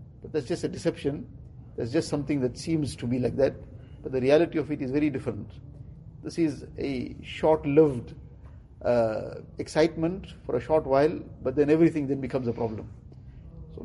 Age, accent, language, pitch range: 50-69, Indian, English, 130-155 Hz